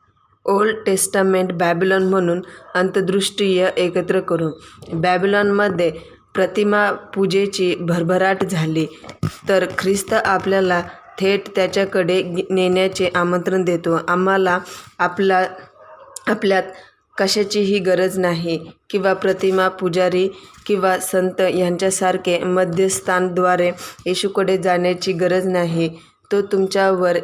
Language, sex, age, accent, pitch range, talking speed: Marathi, female, 20-39, native, 180-195 Hz, 85 wpm